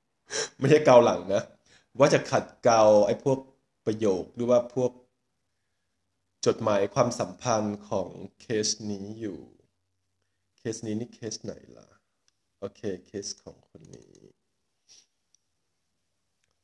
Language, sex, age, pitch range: Thai, male, 20-39, 105-135 Hz